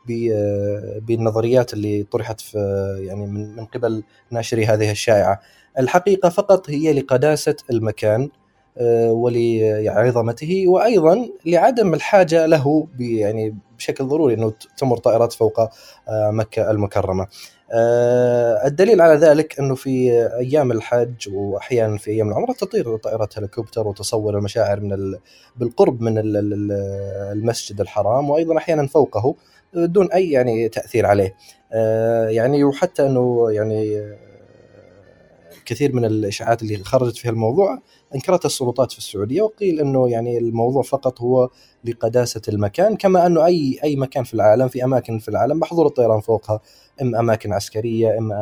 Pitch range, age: 105-135 Hz, 20-39